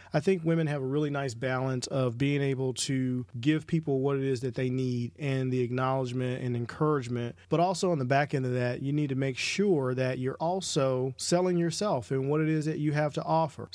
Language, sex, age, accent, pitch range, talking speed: English, male, 40-59, American, 130-155 Hz, 225 wpm